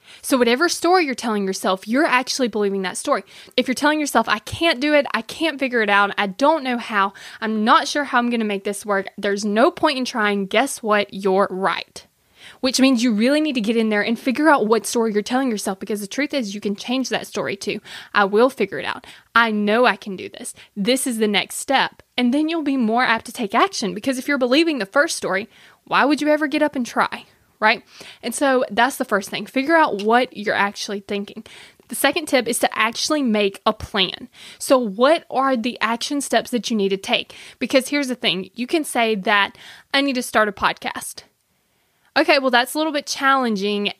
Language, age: English, 20-39